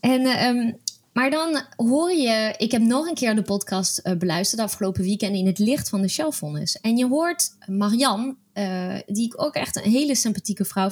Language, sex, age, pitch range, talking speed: Dutch, female, 20-39, 180-235 Hz, 185 wpm